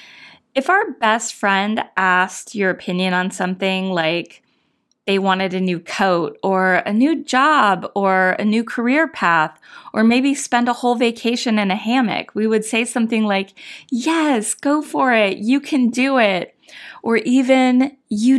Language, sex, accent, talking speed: English, female, American, 160 wpm